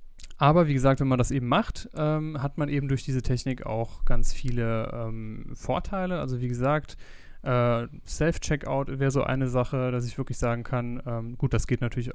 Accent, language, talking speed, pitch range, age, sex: German, German, 195 wpm, 120-135 Hz, 20-39, male